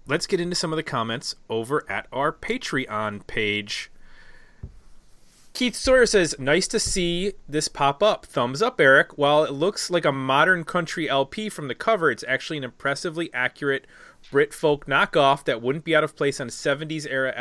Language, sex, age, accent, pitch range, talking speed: English, male, 30-49, American, 130-165 Hz, 185 wpm